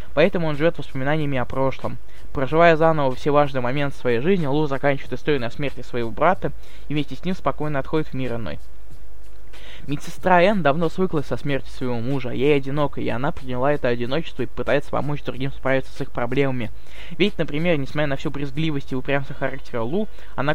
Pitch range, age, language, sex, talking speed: 130-160 Hz, 20-39, Russian, male, 185 wpm